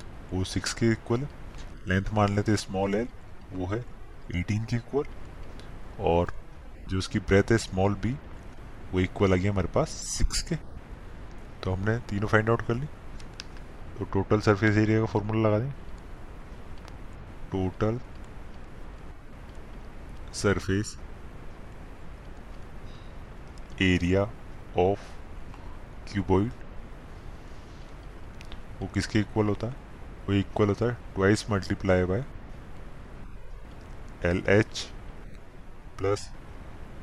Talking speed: 105 wpm